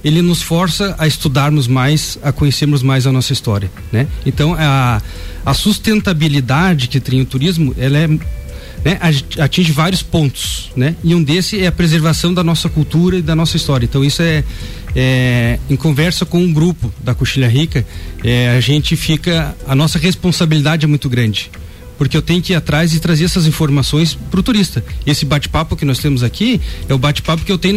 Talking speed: 190 wpm